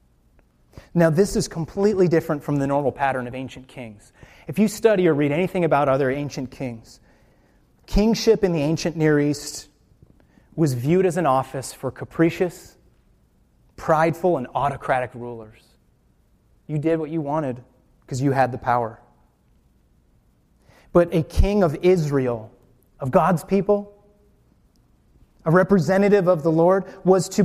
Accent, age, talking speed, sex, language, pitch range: American, 30-49, 140 wpm, male, English, 125-180 Hz